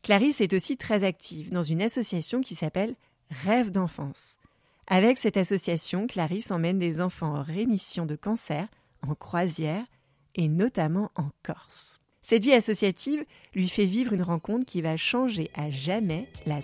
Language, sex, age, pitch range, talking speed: French, female, 30-49, 160-215 Hz, 155 wpm